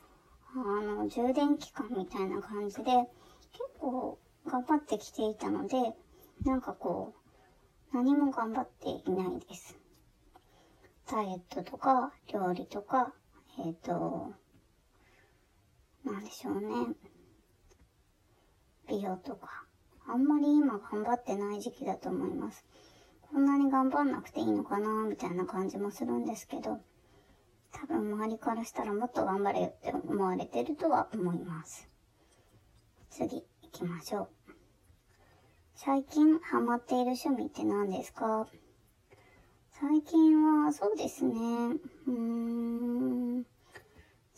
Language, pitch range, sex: Japanese, 205-280 Hz, male